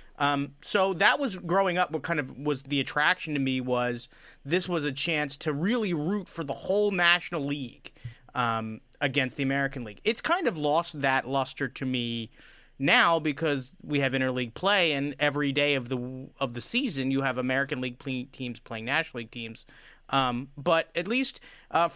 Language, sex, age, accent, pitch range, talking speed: English, male, 30-49, American, 130-170 Hz, 190 wpm